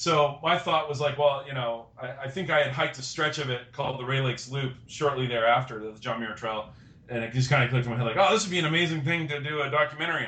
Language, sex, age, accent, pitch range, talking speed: English, male, 30-49, American, 120-150 Hz, 290 wpm